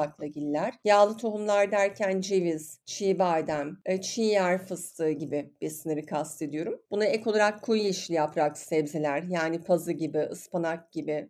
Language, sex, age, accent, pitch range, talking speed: Turkish, female, 50-69, native, 165-220 Hz, 125 wpm